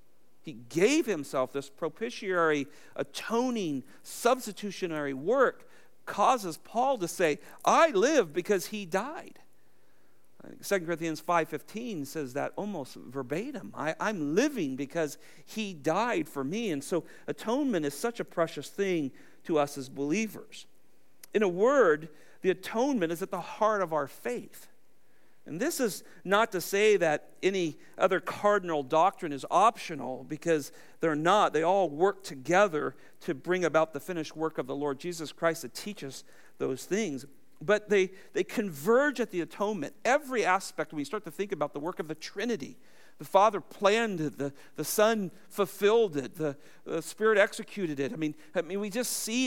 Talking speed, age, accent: 160 wpm, 50-69, American